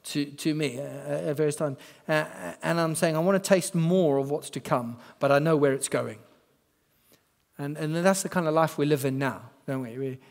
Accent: British